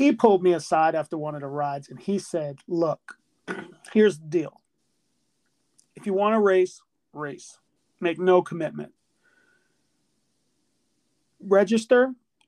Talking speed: 125 wpm